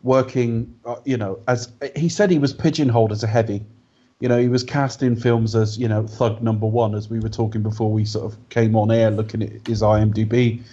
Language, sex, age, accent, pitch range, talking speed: English, male, 30-49, British, 115-135 Hz, 230 wpm